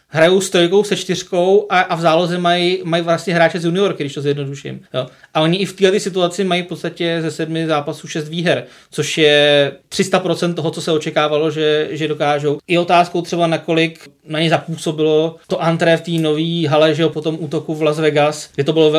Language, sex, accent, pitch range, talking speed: Czech, male, native, 150-170 Hz, 210 wpm